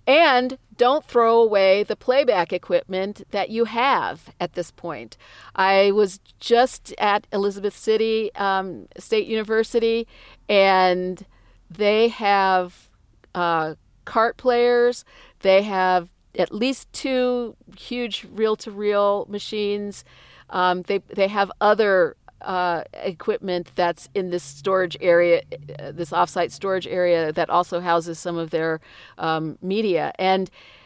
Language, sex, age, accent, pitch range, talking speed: English, female, 50-69, American, 175-210 Hz, 120 wpm